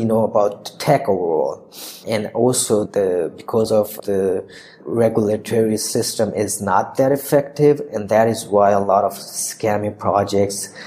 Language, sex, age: English, male, 20-39